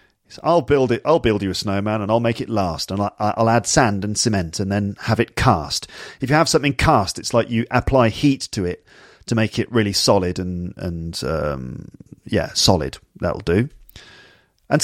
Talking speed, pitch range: 205 wpm, 100-130 Hz